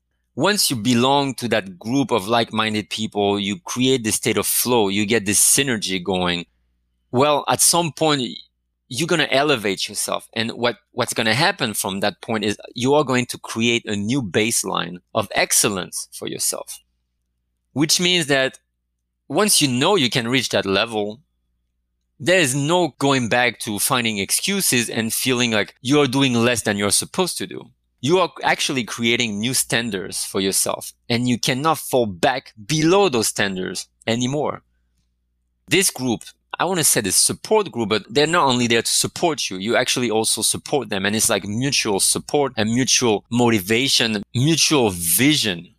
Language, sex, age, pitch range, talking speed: English, male, 30-49, 95-130 Hz, 170 wpm